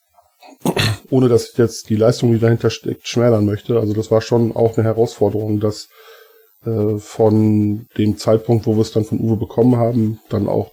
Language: German